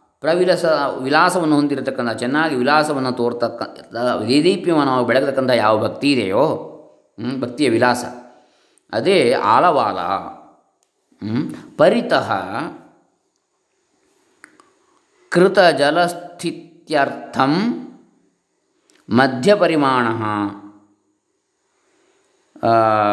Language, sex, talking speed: Kannada, male, 45 wpm